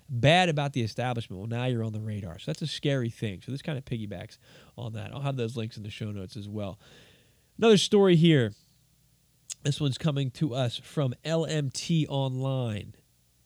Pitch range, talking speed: 110-140 Hz, 190 wpm